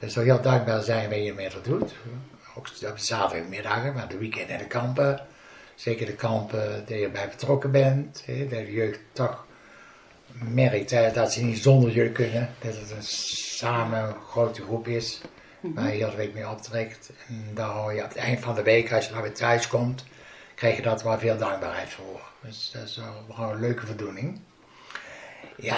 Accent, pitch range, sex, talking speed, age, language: Dutch, 110-125 Hz, male, 190 wpm, 60-79, Dutch